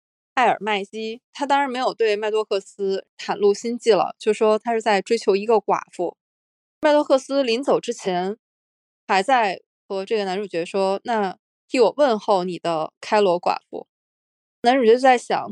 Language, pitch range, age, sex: Chinese, 195-240 Hz, 20-39, female